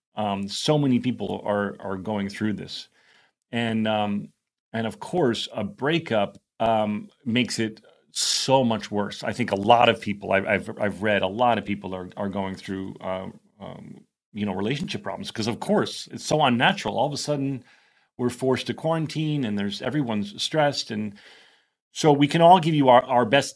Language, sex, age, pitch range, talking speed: English, male, 40-59, 105-125 Hz, 190 wpm